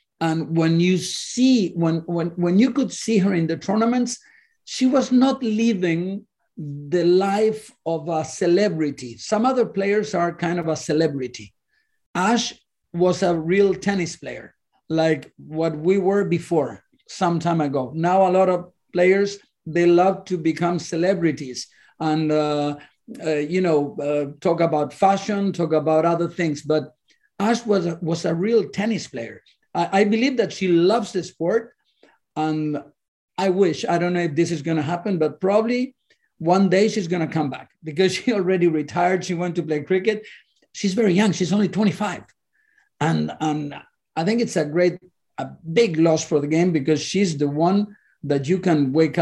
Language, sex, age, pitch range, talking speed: English, male, 50-69, 155-195 Hz, 170 wpm